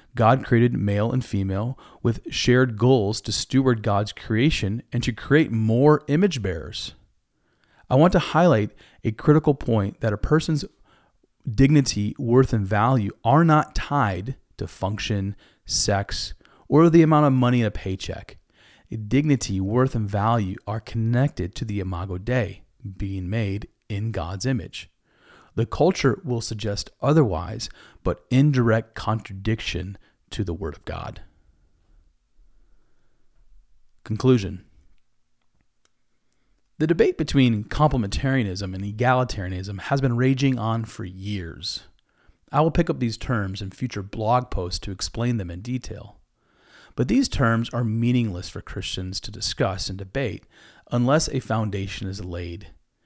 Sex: male